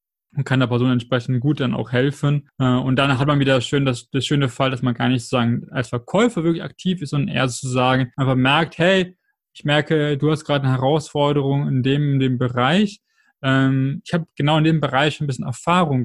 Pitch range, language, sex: 130-155 Hz, German, male